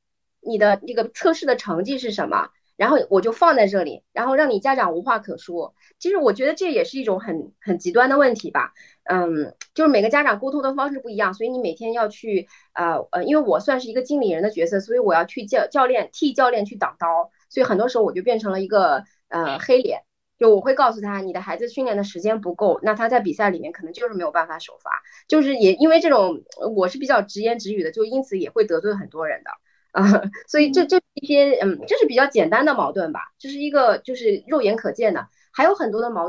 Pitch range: 205-300 Hz